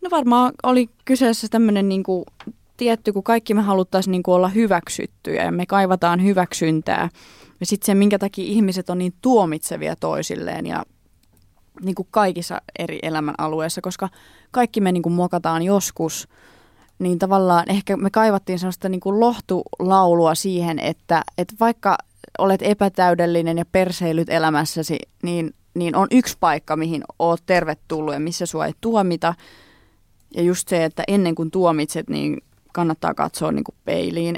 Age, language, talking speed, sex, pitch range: 20-39, Finnish, 140 wpm, female, 165-200 Hz